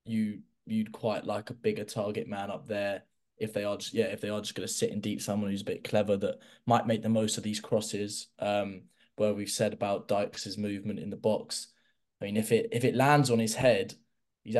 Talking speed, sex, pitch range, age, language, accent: 235 wpm, male, 100-115 Hz, 10-29, English, British